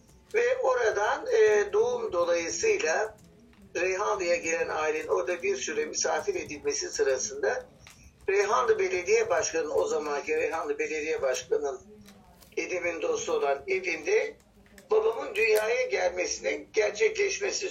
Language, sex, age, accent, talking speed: Turkish, male, 60-79, native, 100 wpm